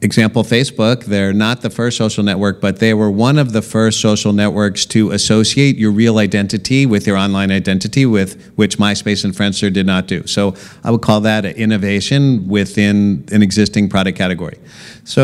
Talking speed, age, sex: 185 wpm, 50-69, male